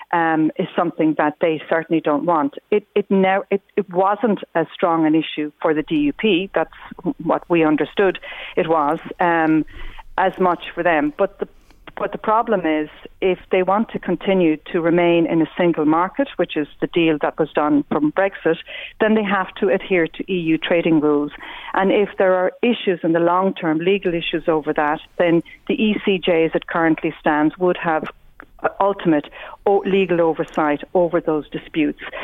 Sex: female